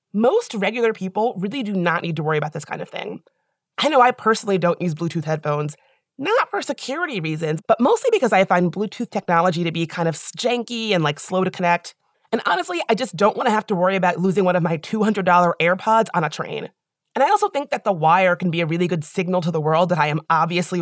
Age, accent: 30-49, American